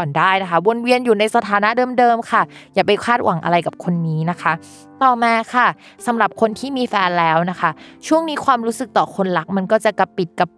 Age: 20-39